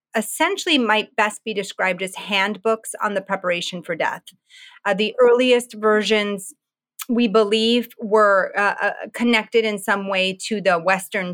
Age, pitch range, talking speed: 30-49, 190-230 Hz, 145 wpm